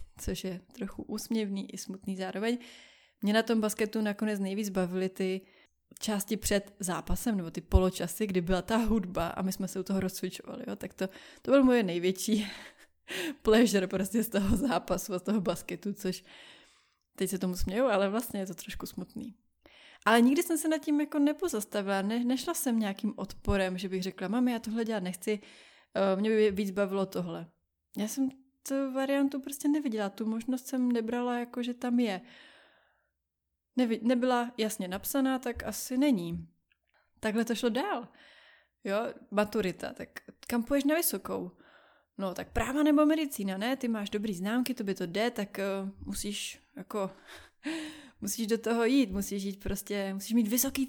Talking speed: 170 wpm